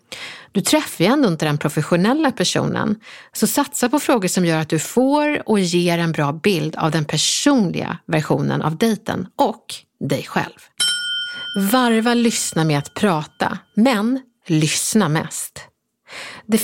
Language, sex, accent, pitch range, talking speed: Swedish, female, native, 165-255 Hz, 145 wpm